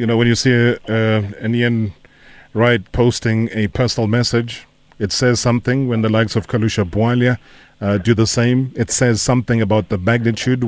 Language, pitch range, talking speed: English, 105-120 Hz, 175 wpm